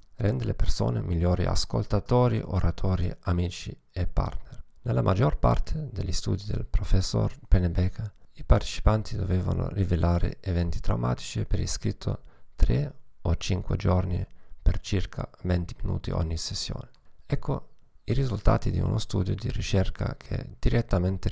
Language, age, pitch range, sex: Italian, 40-59, 90-110 Hz, male